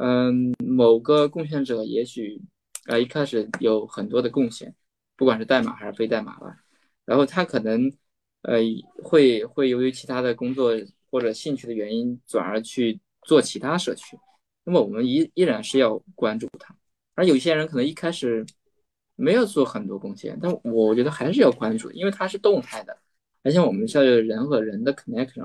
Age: 20-39